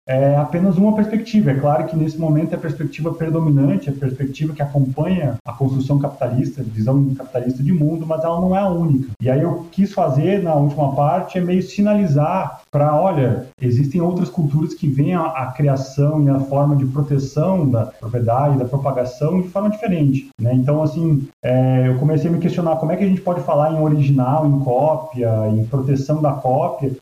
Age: 30-49